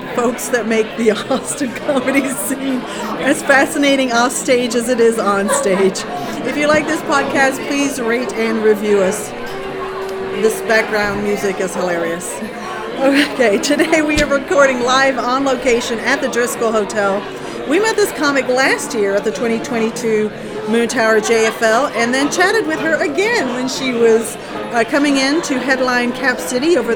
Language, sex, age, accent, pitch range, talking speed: English, female, 40-59, American, 225-275 Hz, 160 wpm